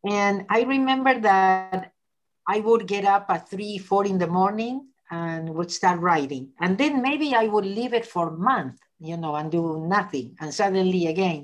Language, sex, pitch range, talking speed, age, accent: English, female, 165-215 Hz, 190 wpm, 50-69, Spanish